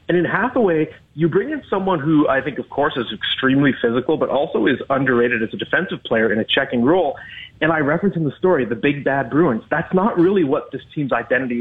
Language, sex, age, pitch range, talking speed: English, male, 30-49, 125-160 Hz, 225 wpm